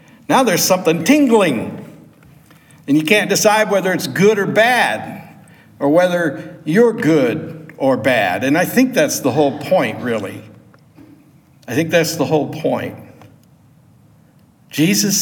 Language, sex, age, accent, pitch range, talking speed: English, male, 60-79, American, 150-200 Hz, 135 wpm